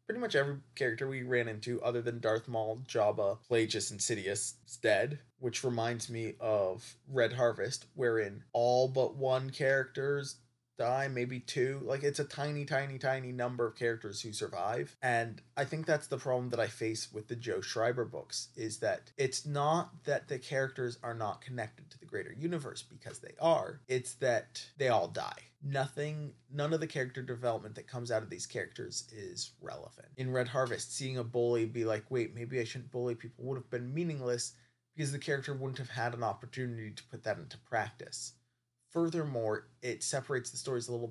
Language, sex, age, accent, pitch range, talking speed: English, male, 20-39, American, 120-140 Hz, 190 wpm